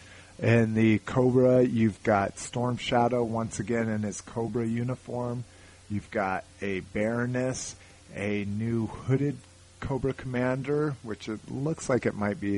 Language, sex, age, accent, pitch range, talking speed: English, male, 30-49, American, 95-115 Hz, 140 wpm